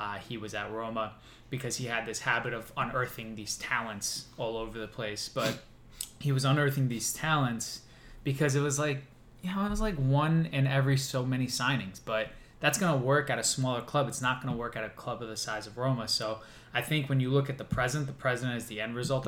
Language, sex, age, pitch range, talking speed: English, male, 20-39, 115-135 Hz, 235 wpm